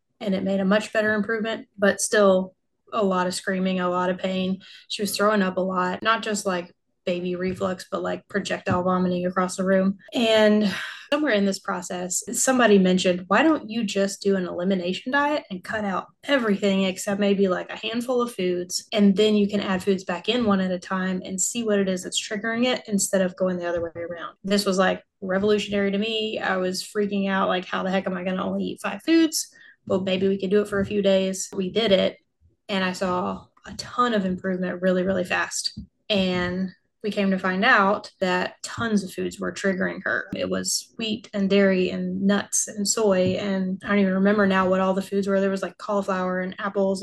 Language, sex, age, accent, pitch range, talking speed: English, female, 20-39, American, 185-210 Hz, 220 wpm